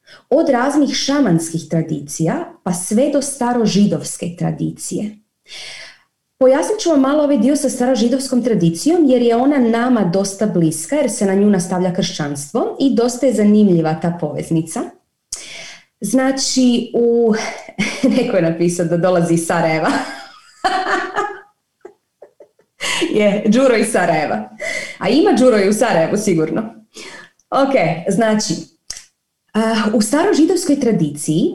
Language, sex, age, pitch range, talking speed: Croatian, female, 30-49, 170-270 Hz, 115 wpm